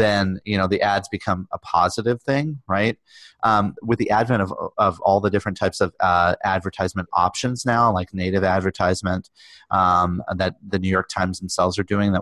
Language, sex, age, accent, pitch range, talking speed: English, male, 30-49, American, 95-115 Hz, 180 wpm